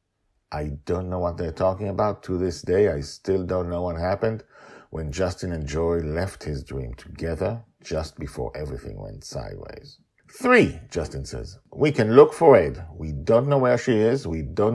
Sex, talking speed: male, 185 wpm